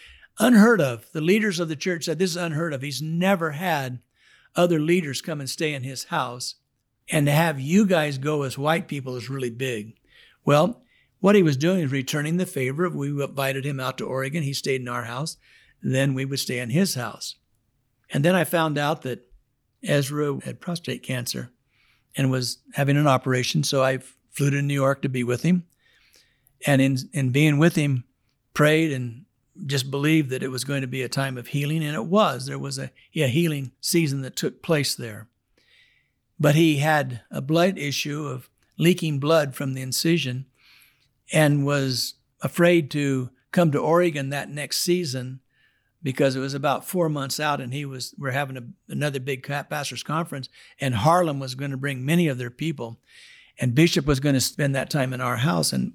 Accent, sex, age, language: American, male, 60-79, English